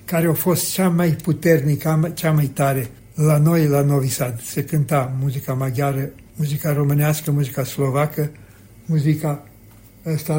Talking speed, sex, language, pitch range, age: 135 wpm, male, Romanian, 140-165 Hz, 60-79